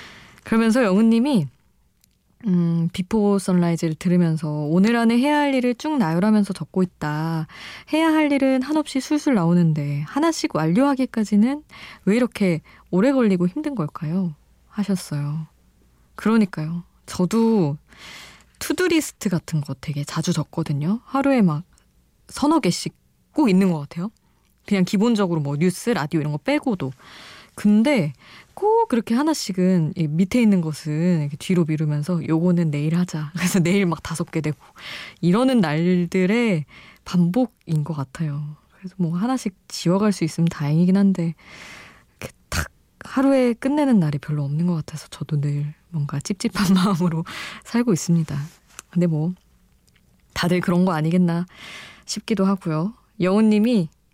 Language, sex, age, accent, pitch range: Korean, female, 20-39, native, 160-225 Hz